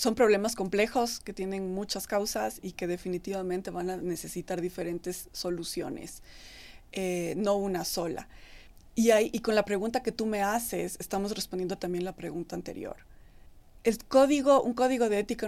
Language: Spanish